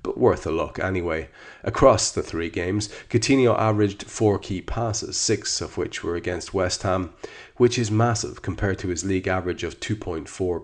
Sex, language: male, English